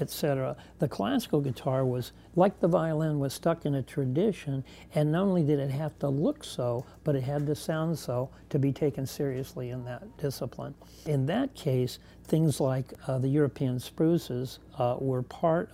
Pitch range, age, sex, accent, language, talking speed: 130-155 Hz, 60-79, male, American, English, 180 wpm